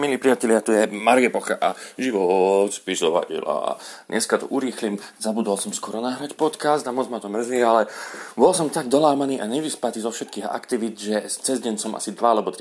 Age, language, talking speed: 30-49, Slovak, 180 wpm